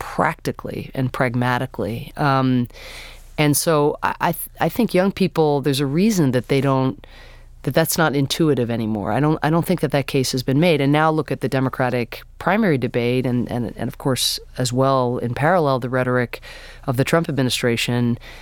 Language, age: English, 30-49